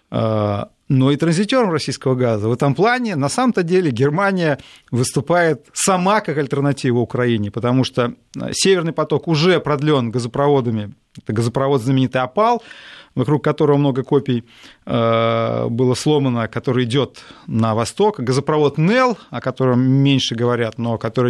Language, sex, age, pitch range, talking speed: Russian, male, 30-49, 120-160 Hz, 130 wpm